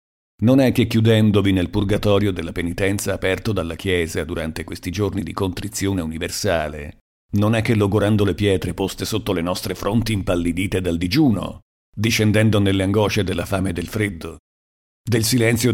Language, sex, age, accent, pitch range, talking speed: Italian, male, 50-69, native, 95-115 Hz, 155 wpm